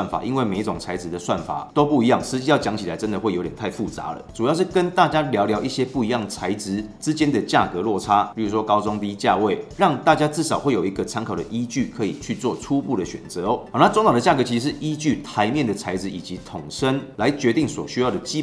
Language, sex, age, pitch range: Chinese, male, 30-49, 105-145 Hz